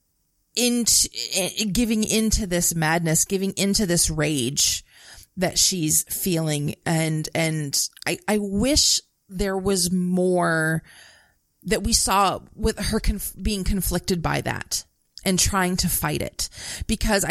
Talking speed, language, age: 120 wpm, English, 30-49